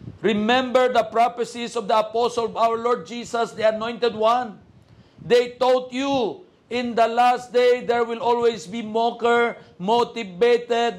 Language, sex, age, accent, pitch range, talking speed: Filipino, male, 50-69, native, 210-260 Hz, 140 wpm